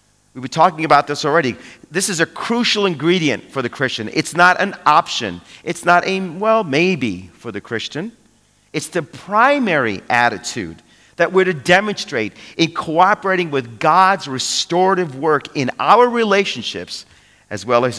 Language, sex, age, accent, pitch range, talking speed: English, male, 40-59, American, 115-185 Hz, 155 wpm